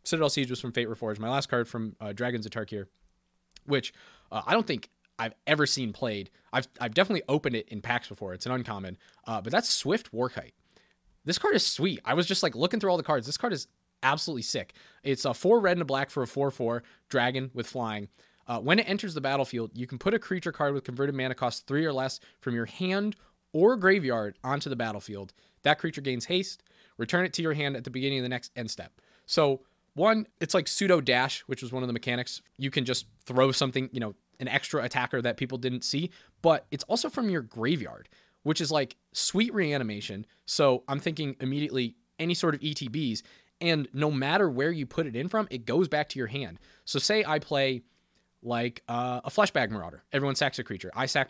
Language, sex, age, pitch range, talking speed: English, male, 20-39, 120-155 Hz, 220 wpm